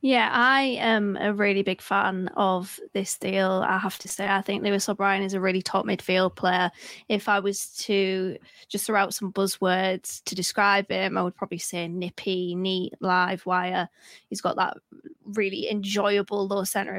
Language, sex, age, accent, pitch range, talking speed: English, female, 20-39, British, 190-220 Hz, 180 wpm